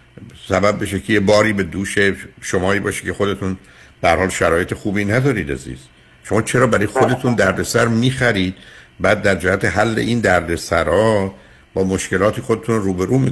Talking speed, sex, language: 155 wpm, male, Persian